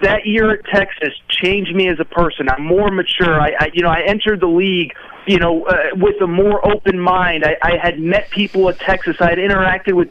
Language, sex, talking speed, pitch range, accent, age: English, male, 230 wpm, 175-215 Hz, American, 30-49